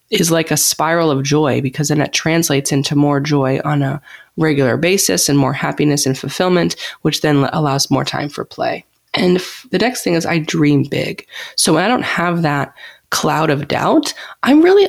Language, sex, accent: English, female, American